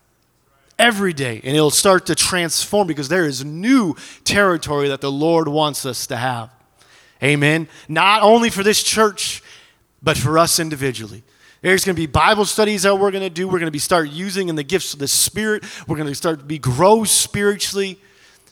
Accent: American